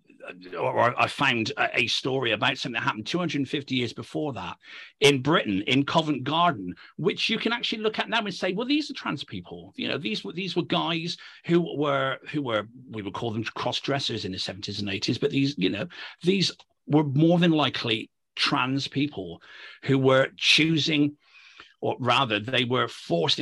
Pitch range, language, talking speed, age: 115-150 Hz, English, 185 wpm, 40-59